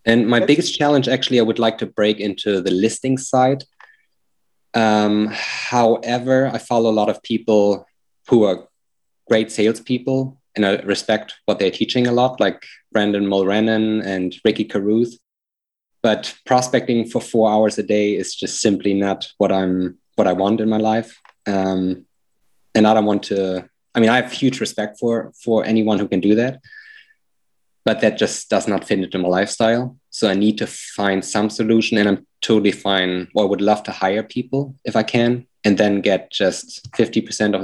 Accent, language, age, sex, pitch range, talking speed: German, English, 20-39, male, 95-120 Hz, 180 wpm